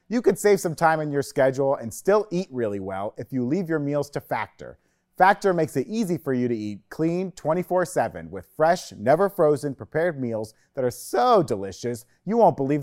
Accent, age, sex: American, 30-49, male